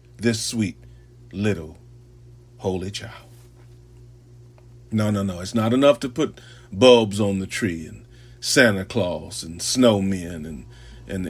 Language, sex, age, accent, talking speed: English, male, 40-59, American, 135 wpm